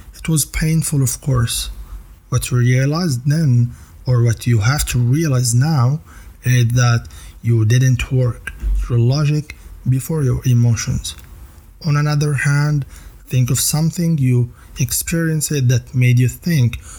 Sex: male